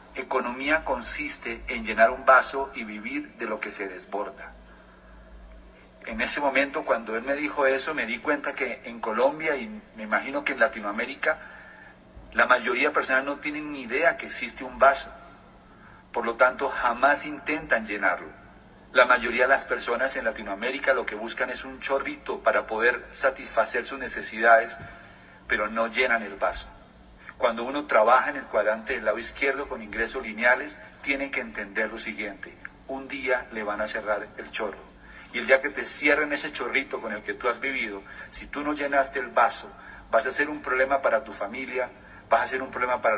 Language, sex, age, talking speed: English, male, 40-59, 185 wpm